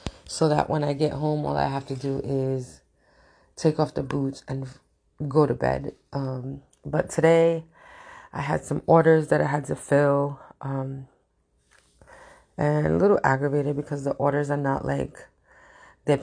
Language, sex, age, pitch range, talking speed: English, female, 20-39, 135-150 Hz, 165 wpm